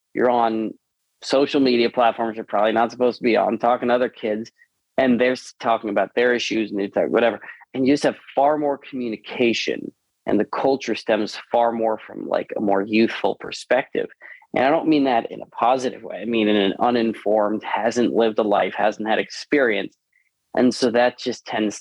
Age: 30-49